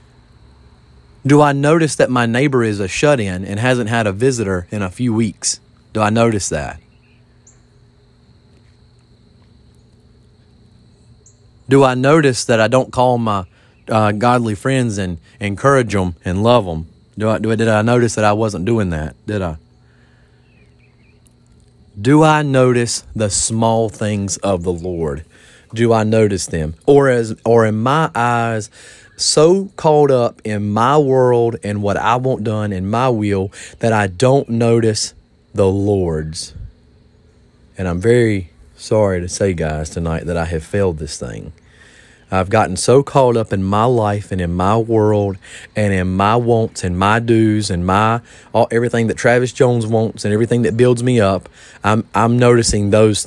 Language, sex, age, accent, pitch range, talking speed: English, male, 30-49, American, 90-120 Hz, 160 wpm